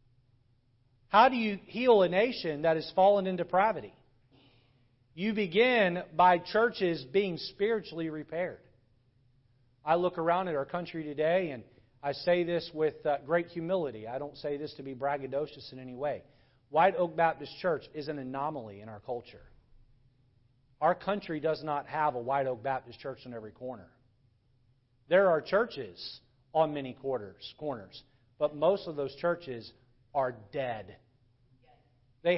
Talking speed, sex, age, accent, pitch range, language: 150 wpm, male, 40-59, American, 125-175 Hz, English